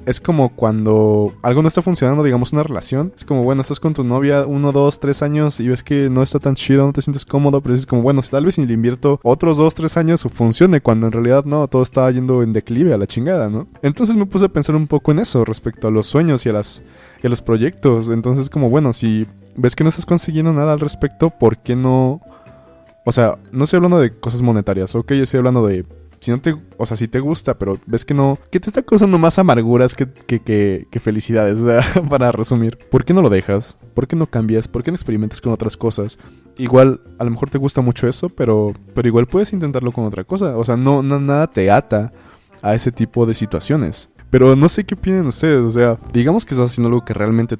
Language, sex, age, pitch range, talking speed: Spanish, male, 20-39, 110-145 Hz, 245 wpm